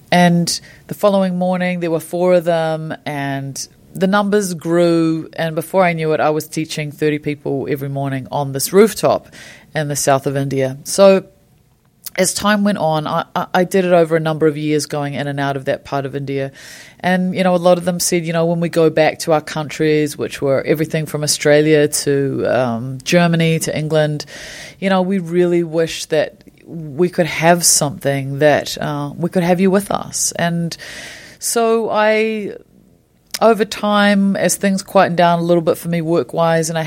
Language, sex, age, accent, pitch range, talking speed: English, female, 30-49, Australian, 150-175 Hz, 195 wpm